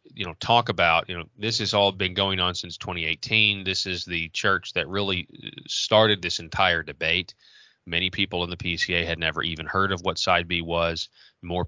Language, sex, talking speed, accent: English, male, 205 wpm, American